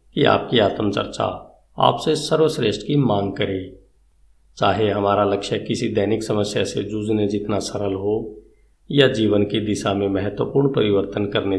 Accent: native